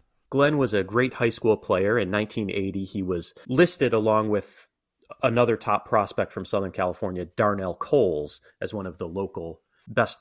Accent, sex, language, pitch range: American, male, English, 95-130 Hz